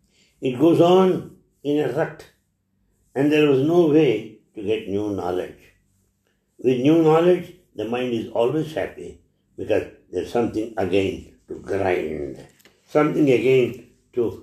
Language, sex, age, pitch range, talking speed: English, male, 60-79, 100-155 Hz, 135 wpm